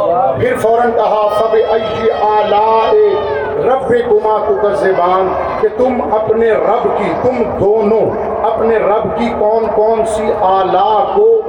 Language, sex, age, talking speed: Urdu, male, 50-69, 130 wpm